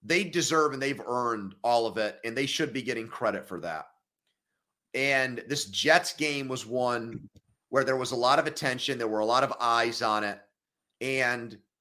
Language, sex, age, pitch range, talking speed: English, male, 30-49, 125-160 Hz, 195 wpm